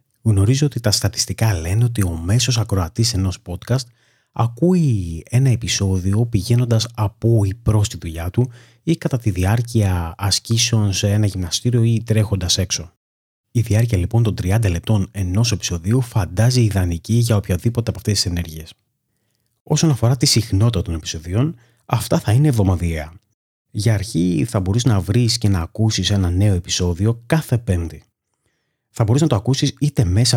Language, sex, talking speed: Greek, male, 155 wpm